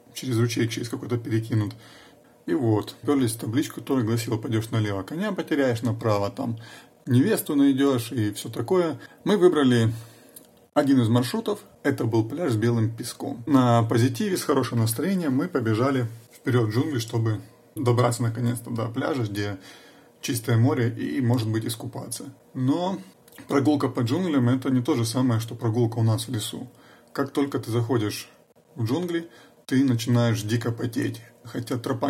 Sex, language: male, Russian